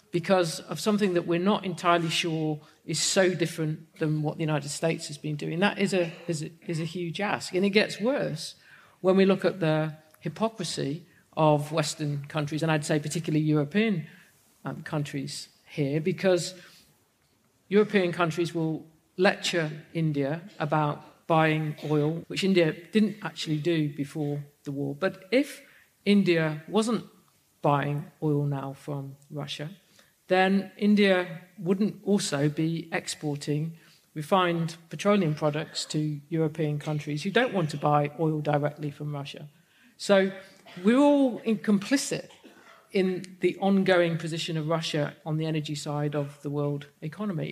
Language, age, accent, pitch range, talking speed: English, 50-69, British, 150-185 Hz, 145 wpm